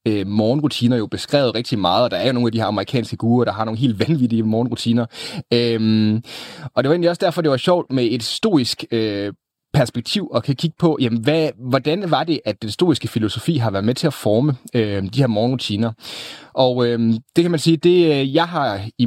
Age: 30-49